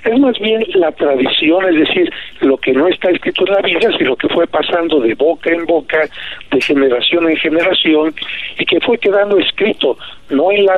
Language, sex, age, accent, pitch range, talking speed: Spanish, male, 60-79, Mexican, 155-235 Hz, 195 wpm